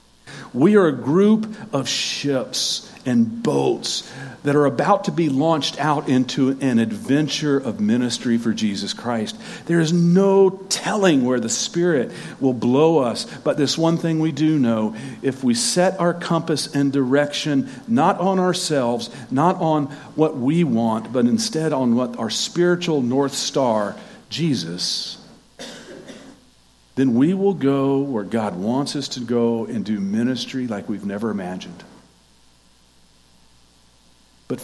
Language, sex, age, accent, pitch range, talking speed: English, male, 50-69, American, 115-160 Hz, 140 wpm